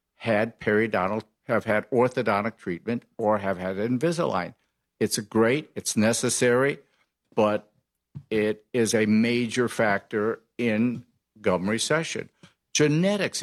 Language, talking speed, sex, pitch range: English, 110 wpm, male, 110-135 Hz